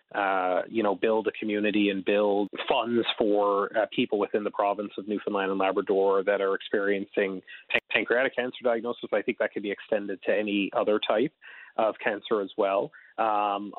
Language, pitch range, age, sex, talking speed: English, 100-110 Hz, 30-49, male, 175 wpm